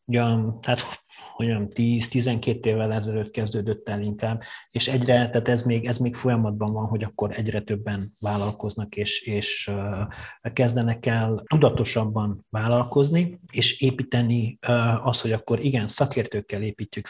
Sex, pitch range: male, 110-140 Hz